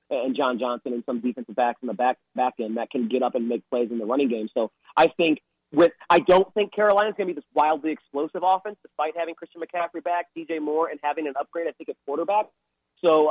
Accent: American